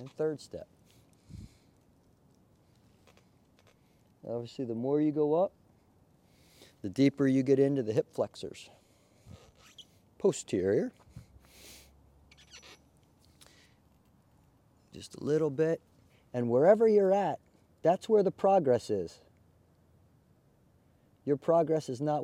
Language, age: English, 40-59